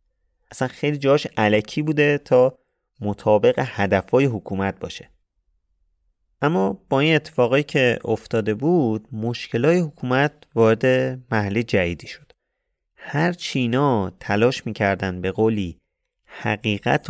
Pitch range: 90-125 Hz